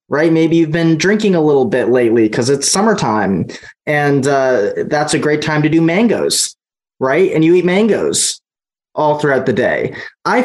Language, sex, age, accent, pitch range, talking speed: English, male, 20-39, American, 125-160 Hz, 180 wpm